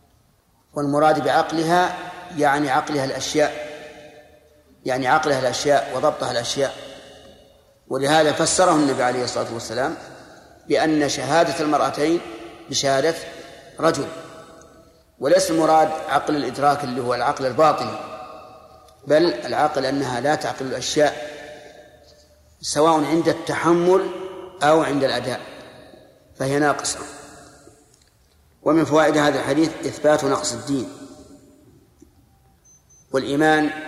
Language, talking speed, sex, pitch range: Arabic, 90 wpm, male, 135-155 Hz